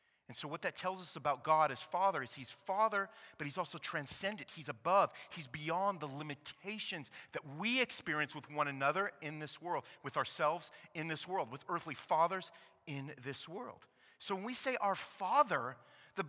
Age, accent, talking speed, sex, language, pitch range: 40-59, American, 185 wpm, male, English, 130-205 Hz